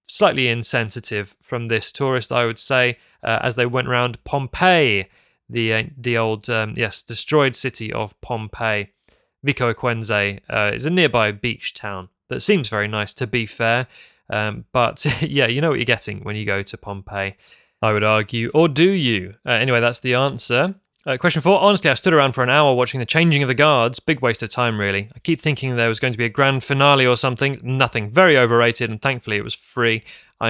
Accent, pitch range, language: British, 115-135 Hz, English